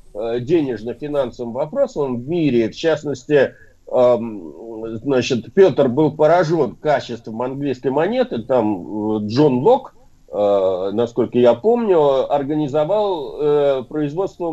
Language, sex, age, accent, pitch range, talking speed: Russian, male, 50-69, native, 120-170 Hz, 85 wpm